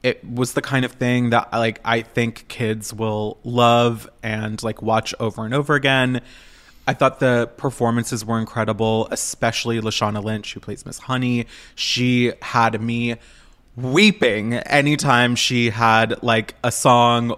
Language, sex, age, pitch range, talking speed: English, male, 20-39, 115-140 Hz, 150 wpm